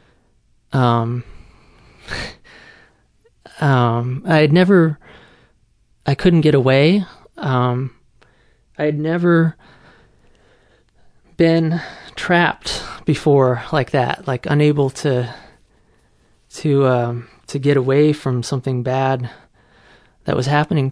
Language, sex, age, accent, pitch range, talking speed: English, male, 20-39, American, 125-150 Hz, 90 wpm